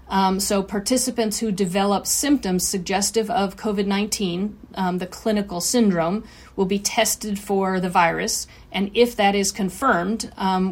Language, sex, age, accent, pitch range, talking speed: English, female, 40-59, American, 185-215 Hz, 135 wpm